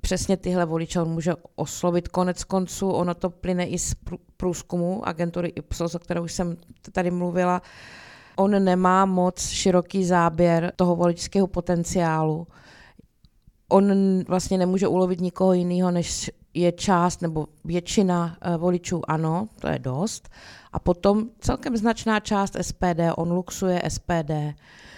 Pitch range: 170-185 Hz